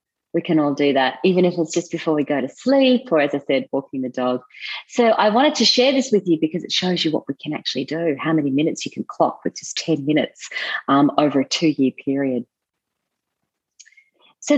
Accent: Australian